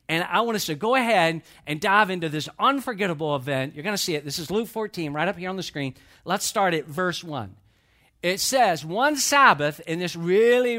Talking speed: 220 wpm